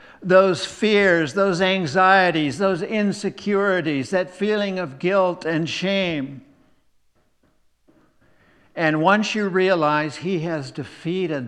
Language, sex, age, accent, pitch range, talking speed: English, male, 60-79, American, 120-155 Hz, 100 wpm